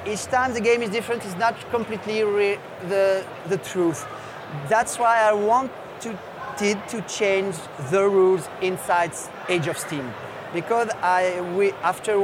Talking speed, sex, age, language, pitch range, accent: 145 wpm, male, 30-49, English, 175-210 Hz, French